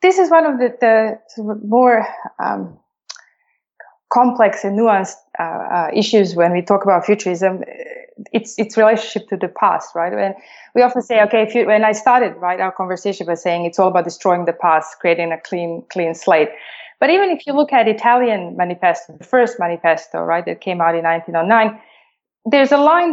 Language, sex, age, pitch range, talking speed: English, female, 20-39, 180-250 Hz, 190 wpm